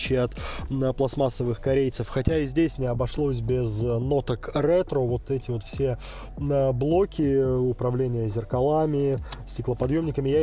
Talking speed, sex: 115 wpm, male